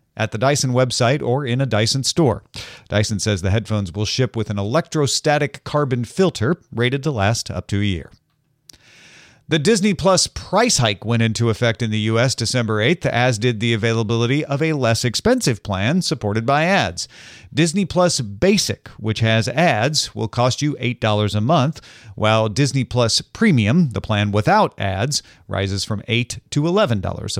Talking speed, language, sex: 170 wpm, English, male